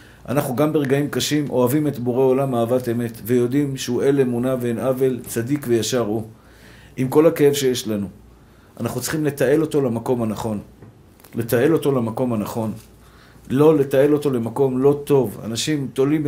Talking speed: 155 wpm